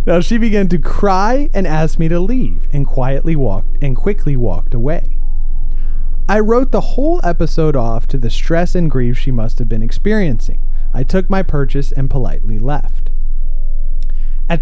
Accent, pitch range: American, 110-170 Hz